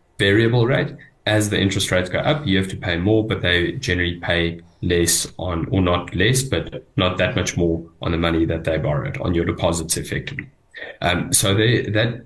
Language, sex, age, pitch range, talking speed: English, male, 10-29, 90-105 Hz, 195 wpm